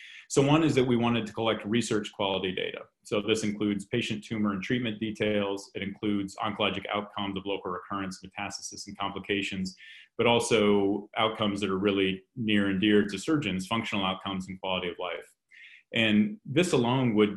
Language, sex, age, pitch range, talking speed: English, male, 30-49, 95-110 Hz, 175 wpm